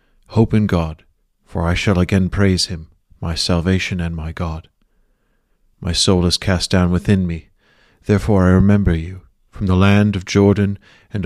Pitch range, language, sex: 85-100 Hz, English, male